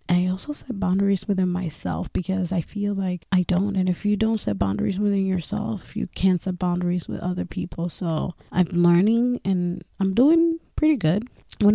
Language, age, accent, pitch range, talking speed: English, 20-39, American, 170-200 Hz, 185 wpm